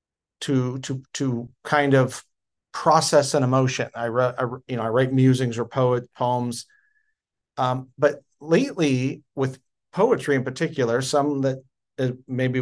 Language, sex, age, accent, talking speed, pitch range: English, male, 40-59, American, 140 wpm, 120-145 Hz